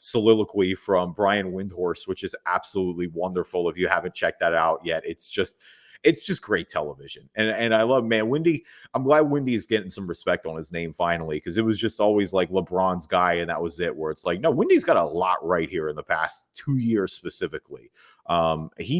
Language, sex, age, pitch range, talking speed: English, male, 30-49, 85-110 Hz, 215 wpm